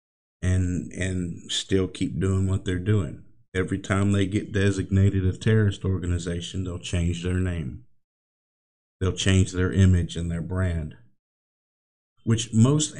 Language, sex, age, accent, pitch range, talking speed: English, male, 50-69, American, 85-105 Hz, 135 wpm